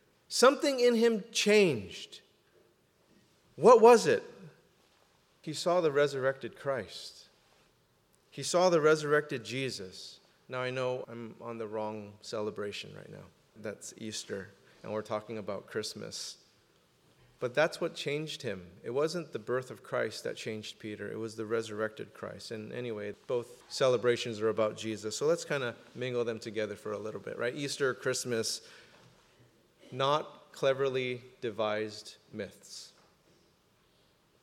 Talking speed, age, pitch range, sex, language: 135 wpm, 30-49, 110-160 Hz, male, English